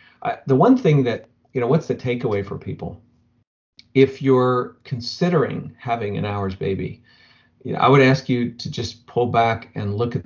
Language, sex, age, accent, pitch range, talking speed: English, male, 40-59, American, 105-135 Hz, 170 wpm